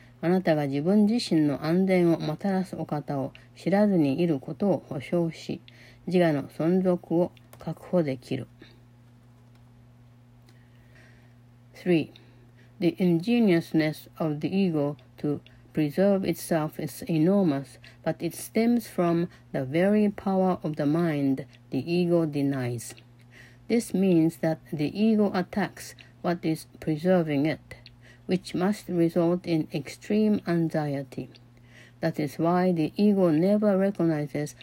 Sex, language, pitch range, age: female, Japanese, 120-180 Hz, 60-79